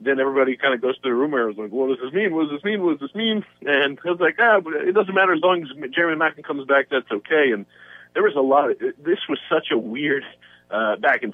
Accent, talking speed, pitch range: American, 295 wpm, 115-175 Hz